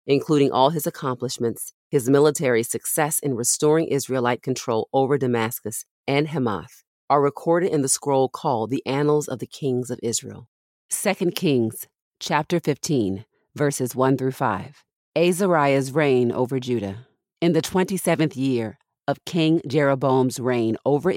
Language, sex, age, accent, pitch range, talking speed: English, female, 40-59, American, 125-160 Hz, 140 wpm